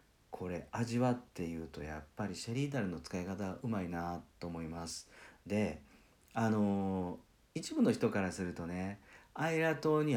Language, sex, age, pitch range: Japanese, male, 50-69, 80-115 Hz